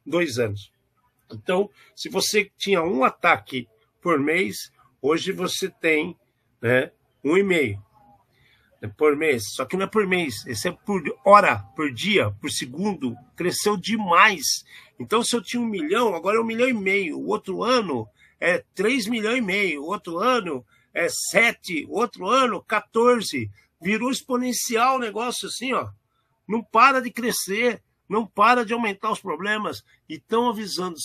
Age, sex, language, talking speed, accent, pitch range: 50-69, male, Portuguese, 160 wpm, Brazilian, 135-225 Hz